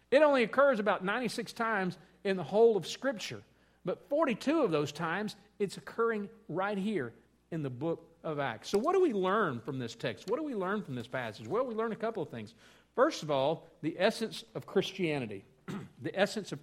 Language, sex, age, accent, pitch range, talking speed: English, male, 50-69, American, 135-200 Hz, 205 wpm